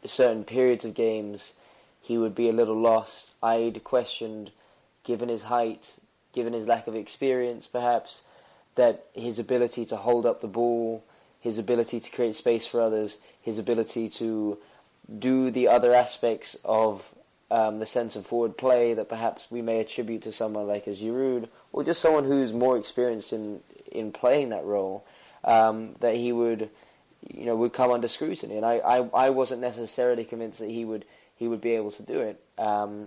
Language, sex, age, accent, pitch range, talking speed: English, male, 20-39, British, 110-125 Hz, 180 wpm